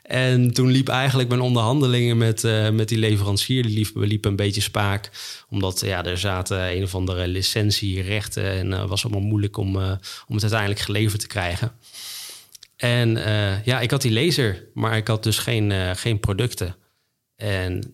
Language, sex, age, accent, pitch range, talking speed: Dutch, male, 20-39, Dutch, 95-115 Hz, 185 wpm